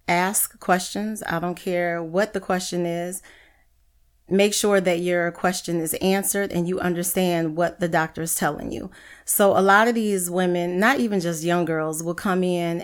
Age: 30-49